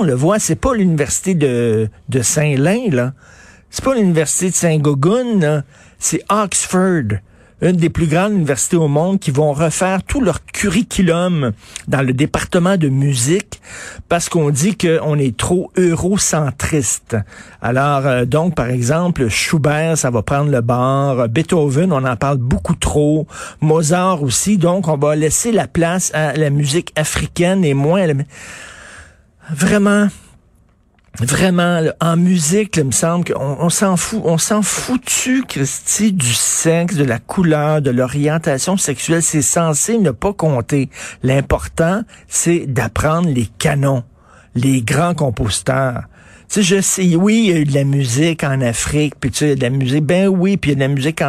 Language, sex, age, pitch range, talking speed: French, male, 50-69, 135-175 Hz, 165 wpm